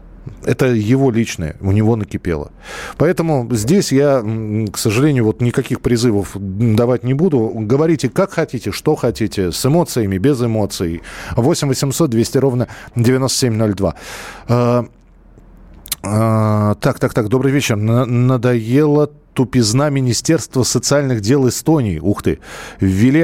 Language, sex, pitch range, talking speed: Russian, male, 105-135 Hz, 105 wpm